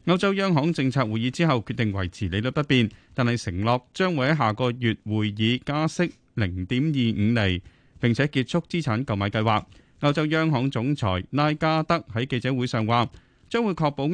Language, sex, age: Chinese, male, 30-49